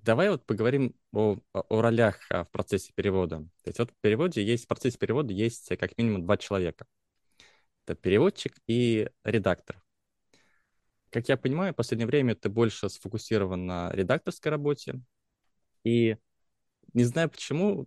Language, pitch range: Russian, 95-120 Hz